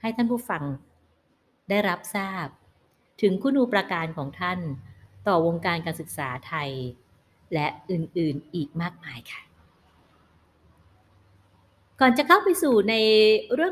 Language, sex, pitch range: Thai, female, 135-195 Hz